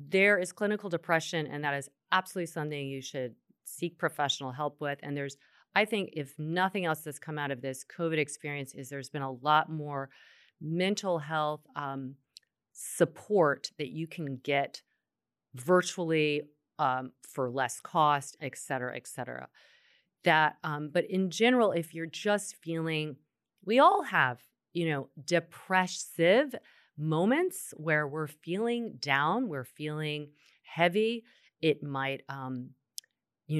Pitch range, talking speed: 140-185 Hz, 140 wpm